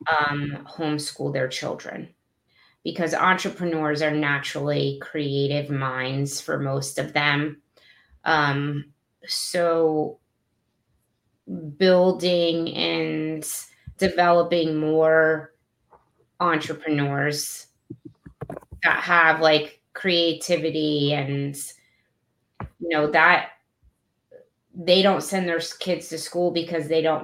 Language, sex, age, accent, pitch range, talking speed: English, female, 30-49, American, 145-165 Hz, 85 wpm